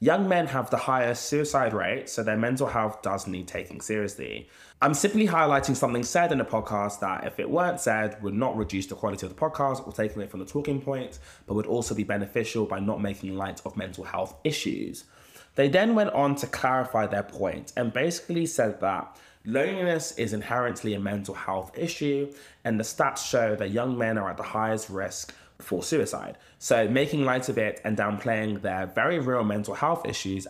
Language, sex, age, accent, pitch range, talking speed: English, male, 20-39, British, 100-140 Hz, 200 wpm